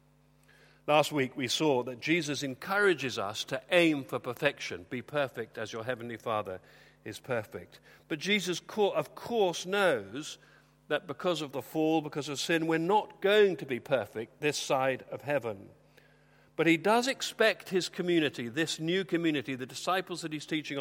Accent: British